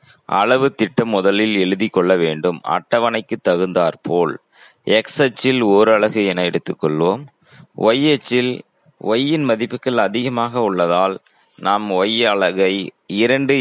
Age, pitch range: 30-49, 95-125 Hz